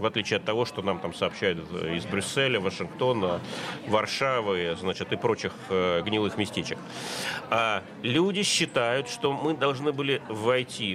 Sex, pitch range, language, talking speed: male, 115-150 Hz, Russian, 130 wpm